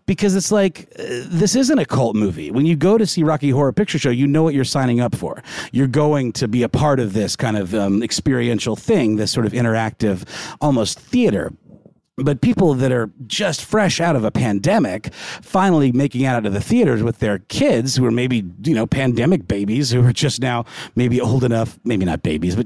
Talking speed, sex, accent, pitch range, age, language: 215 wpm, male, American, 105-145 Hz, 40-59, English